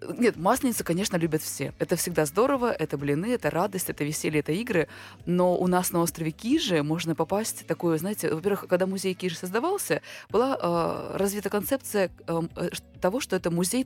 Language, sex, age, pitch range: Russian, female, 20-39, 160-210 Hz